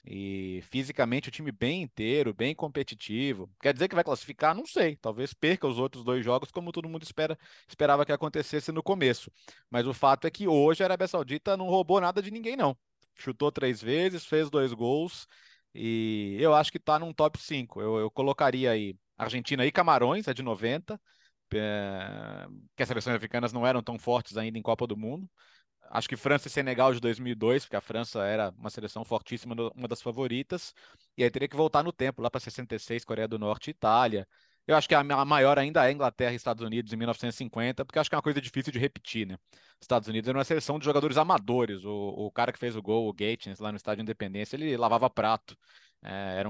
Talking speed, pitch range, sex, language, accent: 210 wpm, 110-150 Hz, male, Portuguese, Brazilian